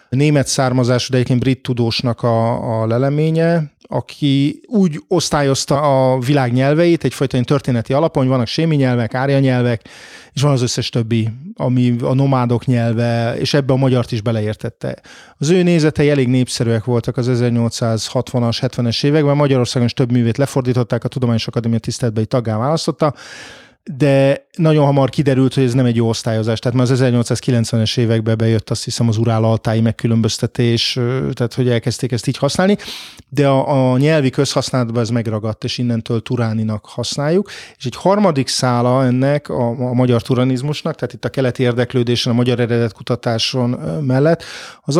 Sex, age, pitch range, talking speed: male, 30-49, 120-140 Hz, 155 wpm